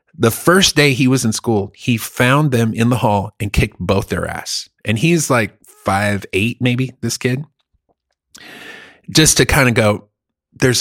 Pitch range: 110-145 Hz